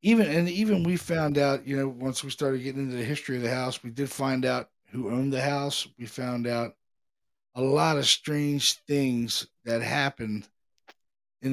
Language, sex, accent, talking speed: English, male, American, 195 wpm